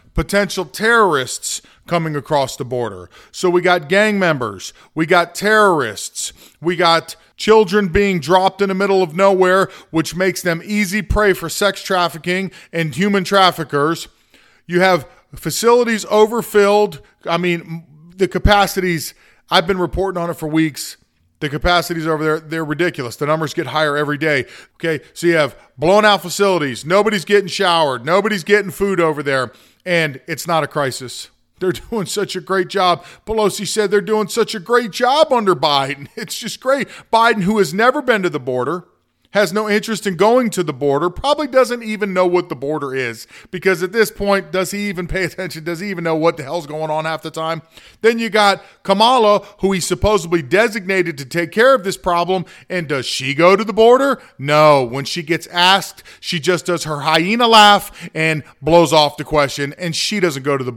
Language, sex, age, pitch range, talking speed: English, male, 40-59, 160-200 Hz, 185 wpm